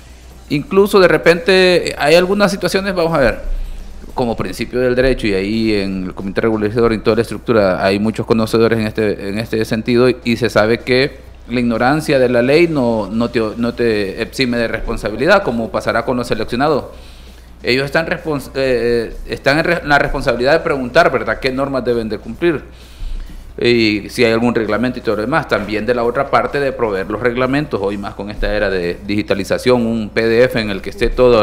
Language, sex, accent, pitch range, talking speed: Spanish, male, Venezuelan, 100-125 Hz, 195 wpm